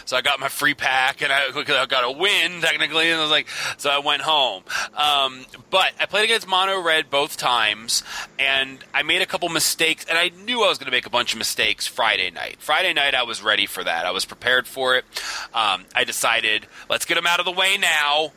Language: English